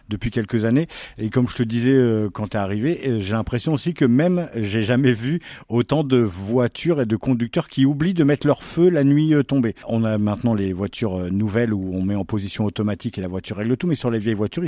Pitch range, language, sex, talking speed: 105-135 Hz, French, male, 235 wpm